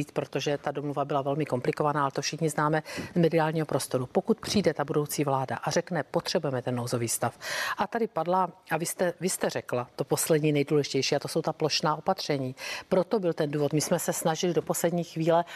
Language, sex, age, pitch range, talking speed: Czech, female, 50-69, 145-175 Hz, 205 wpm